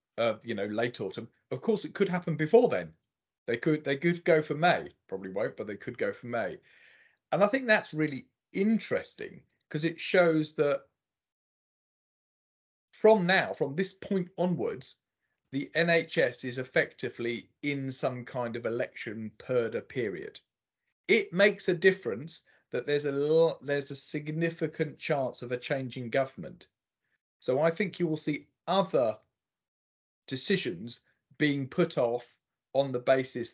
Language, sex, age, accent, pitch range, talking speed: English, male, 40-59, British, 120-180 Hz, 150 wpm